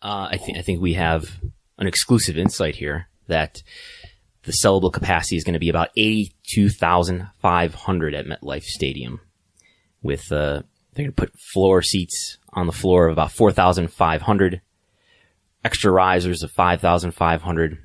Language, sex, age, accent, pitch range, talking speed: English, male, 20-39, American, 80-95 Hz, 140 wpm